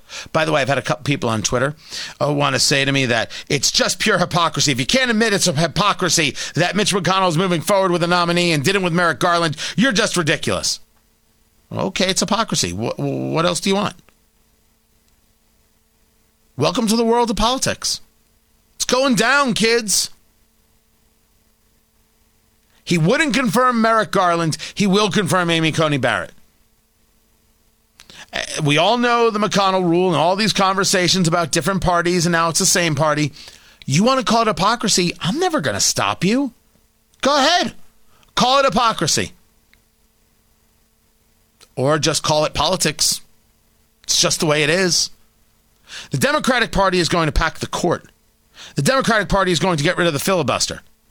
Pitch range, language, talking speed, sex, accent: 160-210 Hz, English, 165 wpm, male, American